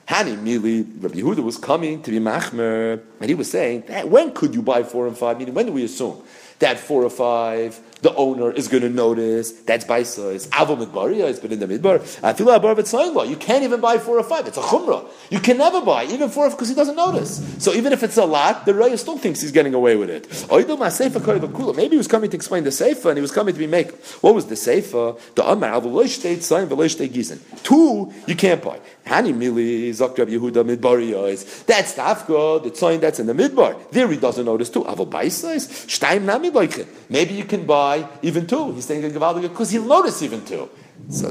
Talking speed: 200 wpm